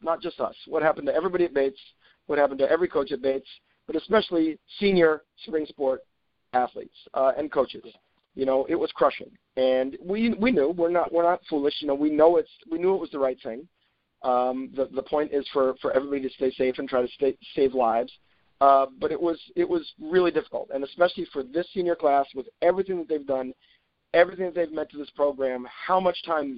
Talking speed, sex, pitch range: 220 wpm, male, 135-170 Hz